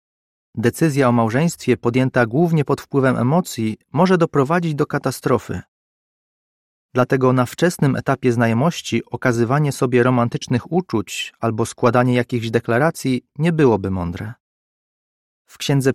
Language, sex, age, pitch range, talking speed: Polish, male, 30-49, 120-155 Hz, 115 wpm